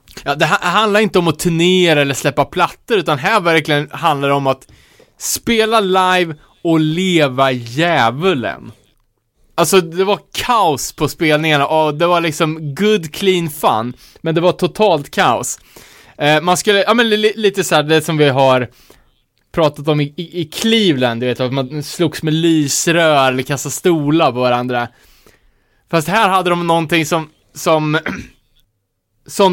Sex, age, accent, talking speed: male, 20-39, Norwegian, 160 wpm